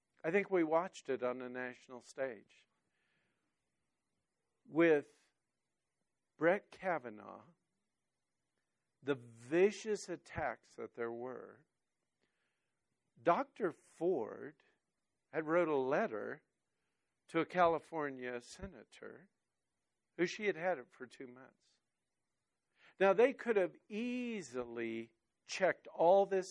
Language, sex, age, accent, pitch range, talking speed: English, male, 50-69, American, 120-185 Hz, 100 wpm